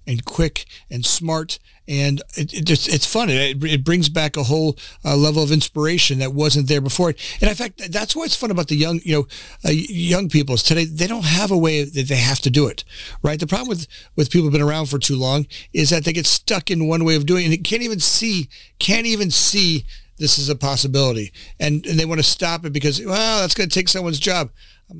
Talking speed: 245 wpm